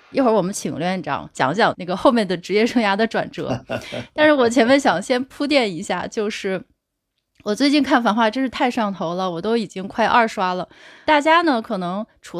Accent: native